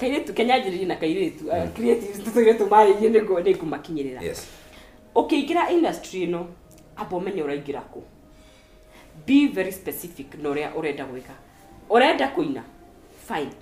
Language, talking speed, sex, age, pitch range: Swahili, 110 wpm, female, 30-49, 160-250 Hz